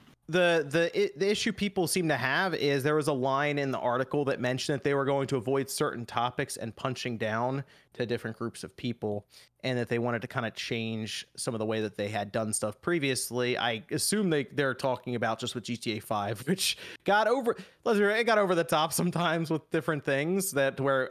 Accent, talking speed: American, 215 wpm